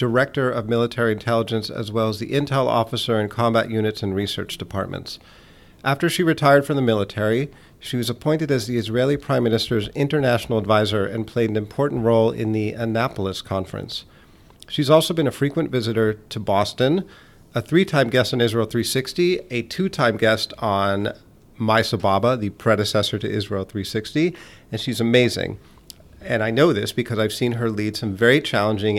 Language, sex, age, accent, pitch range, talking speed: English, male, 40-59, American, 105-125 Hz, 170 wpm